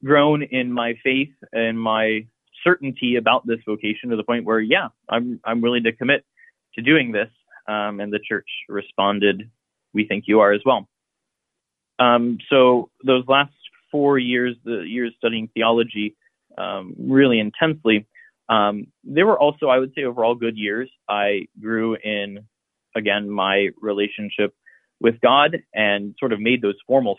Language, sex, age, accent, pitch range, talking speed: English, male, 30-49, American, 105-130 Hz, 155 wpm